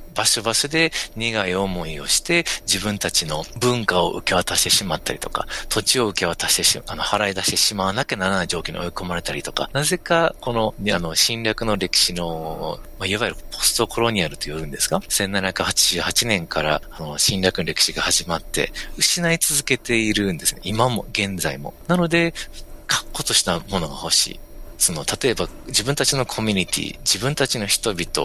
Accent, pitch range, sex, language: native, 95-140 Hz, male, Japanese